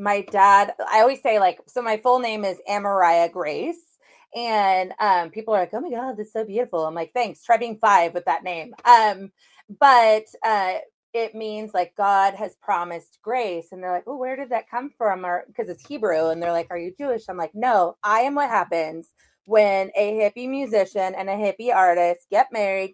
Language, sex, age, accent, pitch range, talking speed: English, female, 30-49, American, 175-220 Hz, 210 wpm